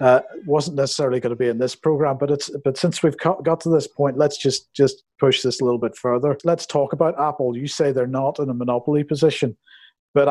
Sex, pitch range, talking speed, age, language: male, 125-150 Hz, 235 wpm, 50-69, English